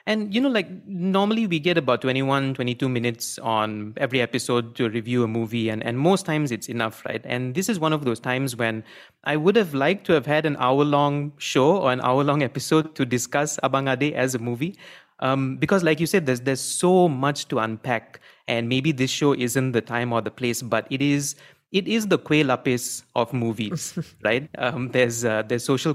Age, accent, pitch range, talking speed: 30-49, Indian, 120-150 Hz, 210 wpm